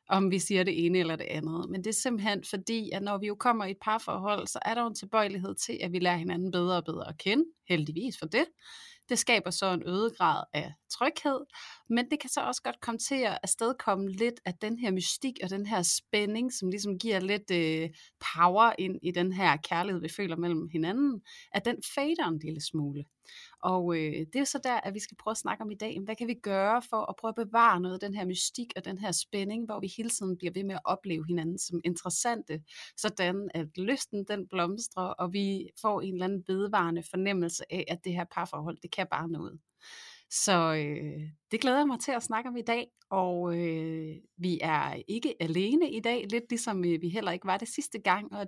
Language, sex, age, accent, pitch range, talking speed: Danish, female, 30-49, native, 175-230 Hz, 225 wpm